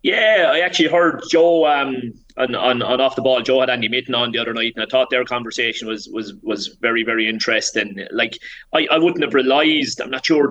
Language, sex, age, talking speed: English, male, 30-49, 230 wpm